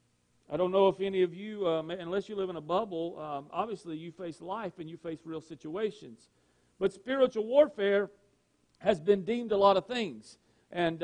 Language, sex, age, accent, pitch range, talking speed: English, male, 50-69, American, 165-215 Hz, 190 wpm